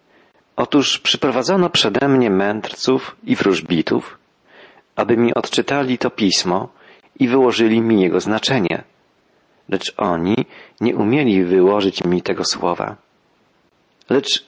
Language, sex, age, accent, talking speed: Polish, male, 40-59, native, 110 wpm